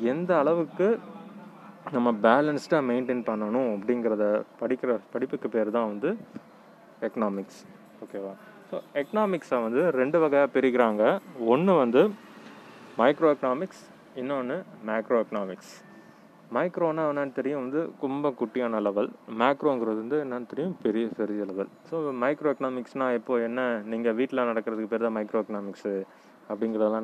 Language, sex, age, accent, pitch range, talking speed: Tamil, male, 20-39, native, 110-140 Hz, 120 wpm